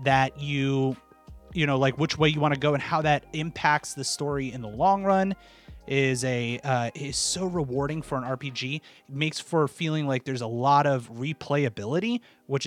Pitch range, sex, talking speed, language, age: 130-160 Hz, male, 195 wpm, English, 30-49